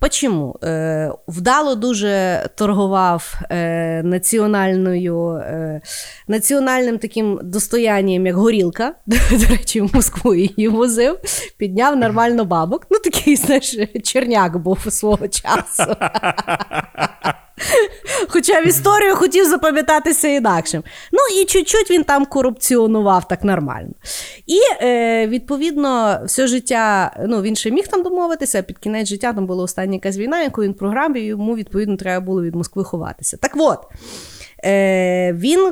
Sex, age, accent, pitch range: female, 30-49, native, 190-275 Hz